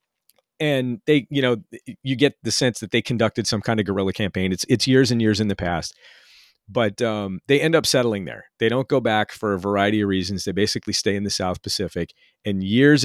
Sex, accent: male, American